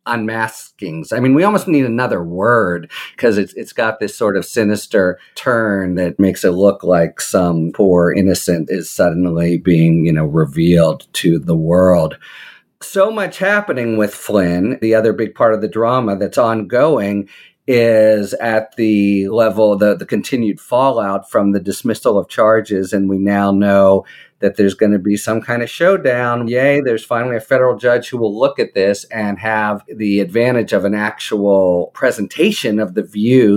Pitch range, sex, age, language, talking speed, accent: 95-115 Hz, male, 50-69, English, 175 wpm, American